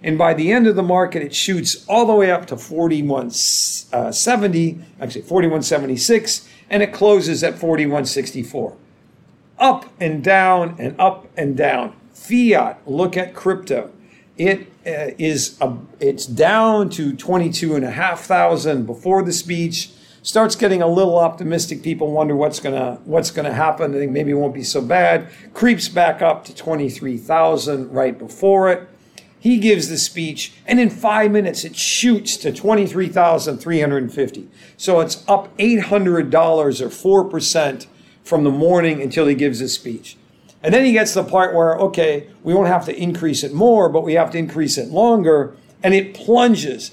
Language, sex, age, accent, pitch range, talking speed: English, male, 50-69, American, 150-195 Hz, 155 wpm